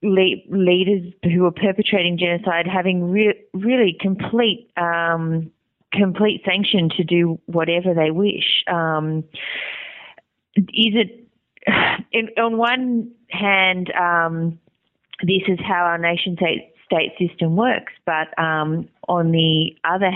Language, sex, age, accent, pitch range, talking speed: English, female, 30-49, Australian, 160-200 Hz, 120 wpm